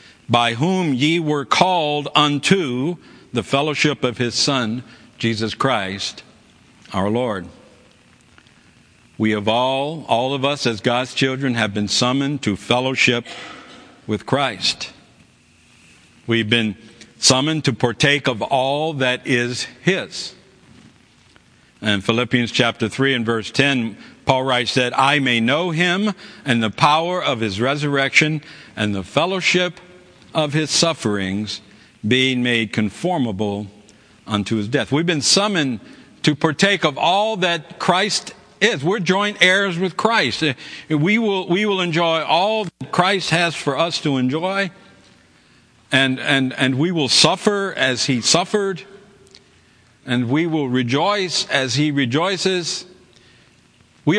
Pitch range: 120-175 Hz